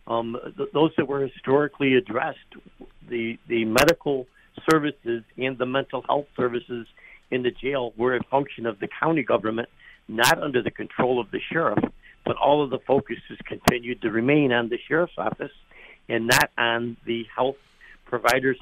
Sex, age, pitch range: male, 60-79, 115-130 Hz